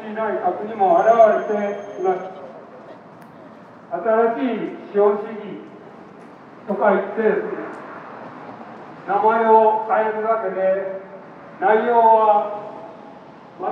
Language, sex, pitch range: Japanese, male, 205-225 Hz